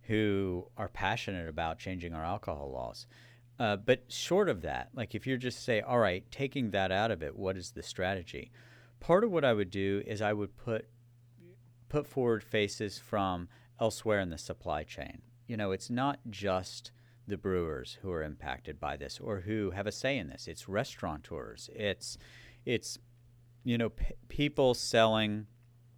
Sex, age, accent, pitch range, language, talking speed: male, 50-69, American, 95-120 Hz, English, 175 wpm